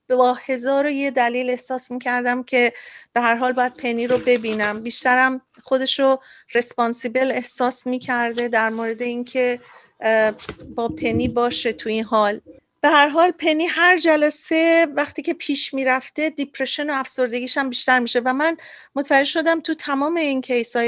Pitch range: 235-280 Hz